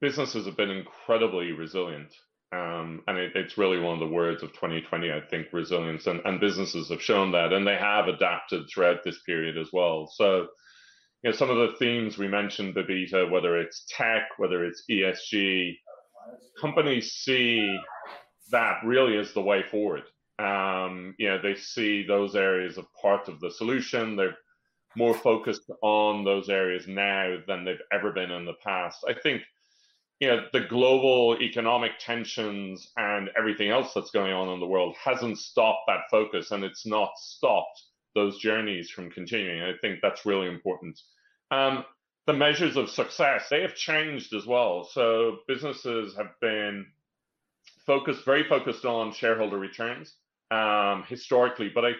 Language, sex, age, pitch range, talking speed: English, male, 30-49, 95-120 Hz, 165 wpm